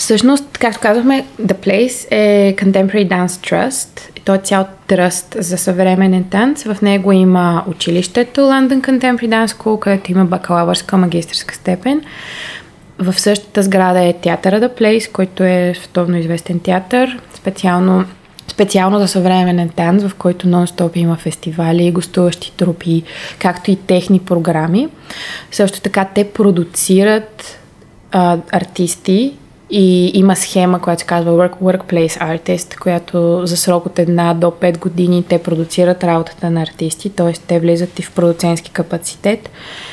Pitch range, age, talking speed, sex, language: 175-205 Hz, 20-39, 140 wpm, female, Bulgarian